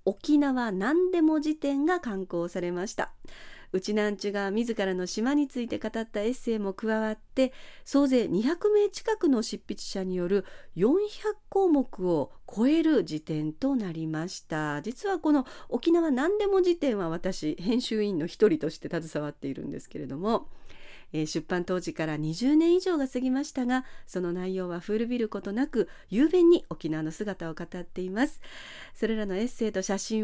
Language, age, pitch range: Japanese, 40-59, 185-295 Hz